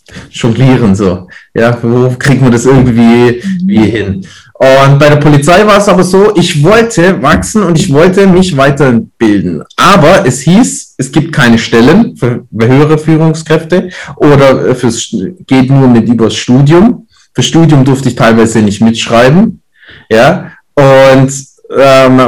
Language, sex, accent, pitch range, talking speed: German, male, German, 125-165 Hz, 145 wpm